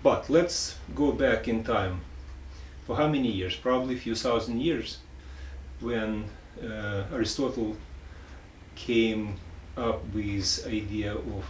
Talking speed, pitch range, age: 120 wpm, 75-115 Hz, 40-59